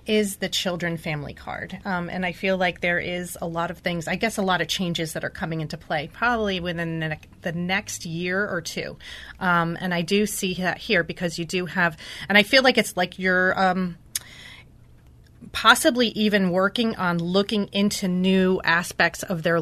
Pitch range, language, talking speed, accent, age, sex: 175-215 Hz, English, 200 wpm, American, 30-49, female